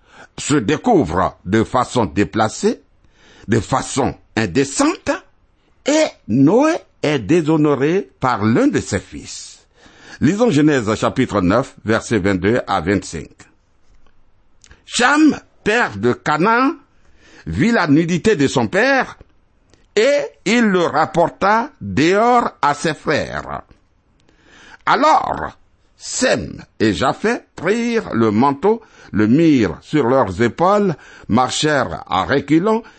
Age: 60-79